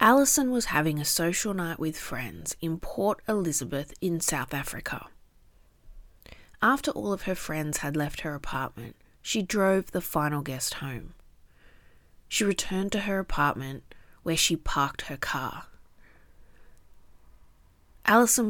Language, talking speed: English, 130 wpm